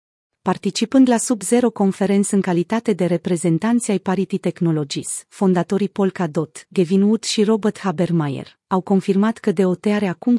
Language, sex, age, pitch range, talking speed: Romanian, female, 30-49, 180-225 Hz, 135 wpm